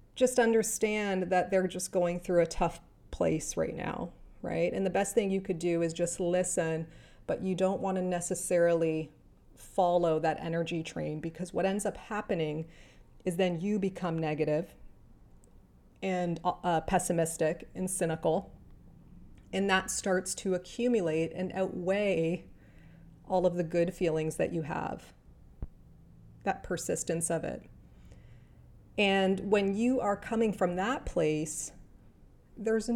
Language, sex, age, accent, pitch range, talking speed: English, female, 30-49, American, 165-205 Hz, 140 wpm